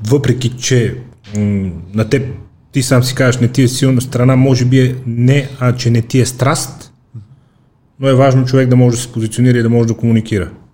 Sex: male